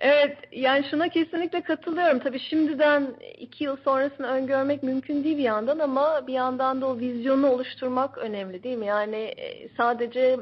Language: Turkish